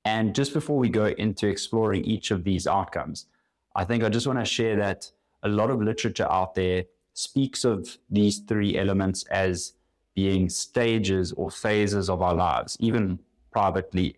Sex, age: male, 20-39